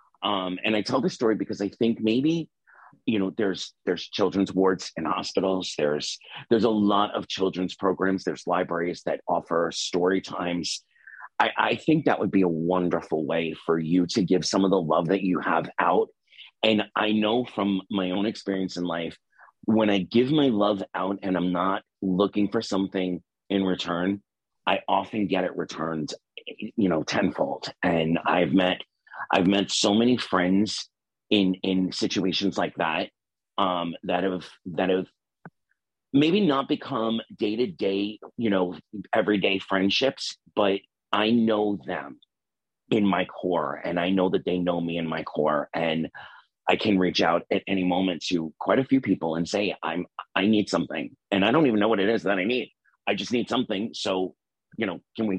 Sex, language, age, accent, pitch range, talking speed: male, English, 40-59, American, 90-105 Hz, 180 wpm